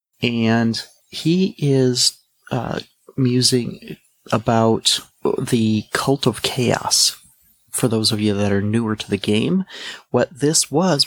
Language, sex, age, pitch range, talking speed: English, male, 30-49, 110-130 Hz, 125 wpm